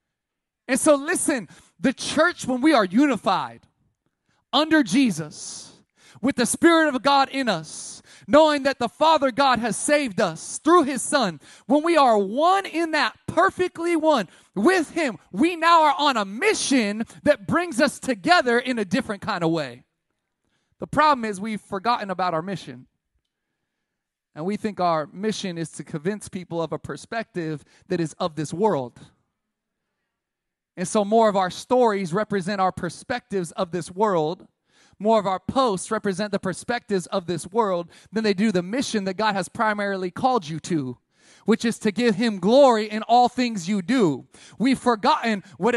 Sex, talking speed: male, 170 wpm